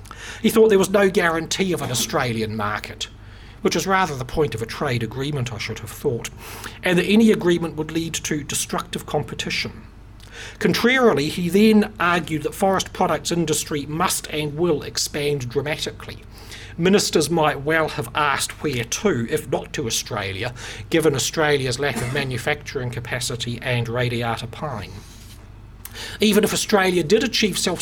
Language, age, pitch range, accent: English, 40-59, 115-165 Hz, British